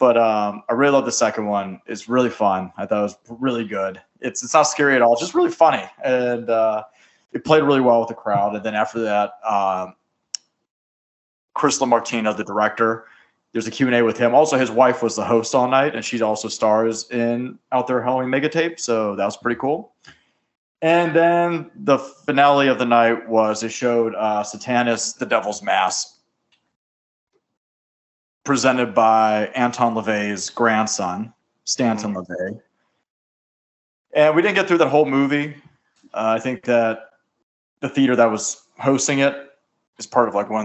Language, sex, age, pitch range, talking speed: English, male, 30-49, 110-135 Hz, 175 wpm